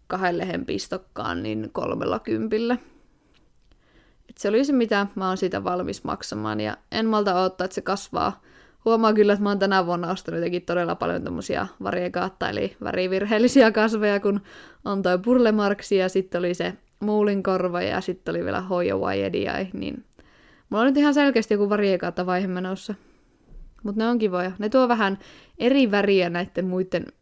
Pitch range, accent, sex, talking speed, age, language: 180-220 Hz, native, female, 160 wpm, 20-39, Finnish